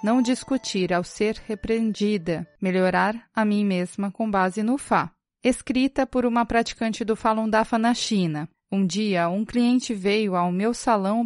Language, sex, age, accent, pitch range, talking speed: Portuguese, female, 20-39, Brazilian, 190-235 Hz, 160 wpm